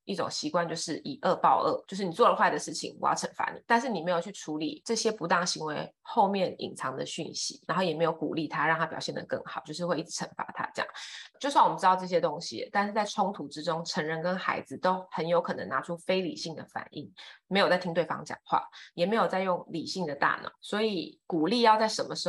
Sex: female